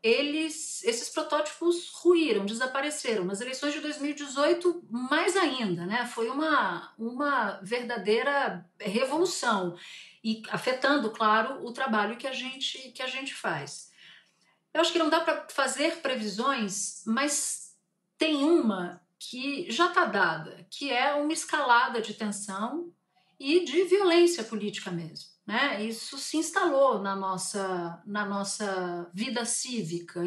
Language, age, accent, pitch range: Portuguese, 50-69, Brazilian, 205-285 Hz